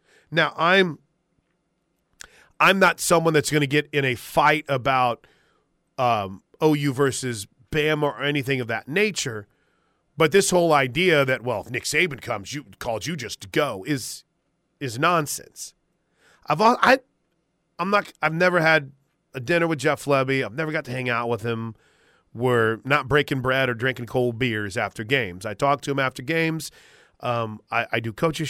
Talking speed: 175 wpm